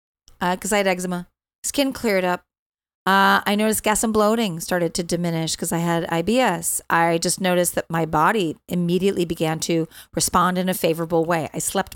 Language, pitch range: English, 170-205 Hz